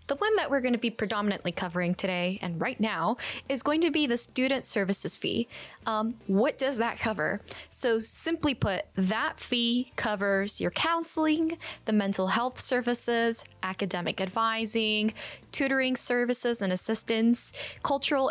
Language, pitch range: English, 205-255 Hz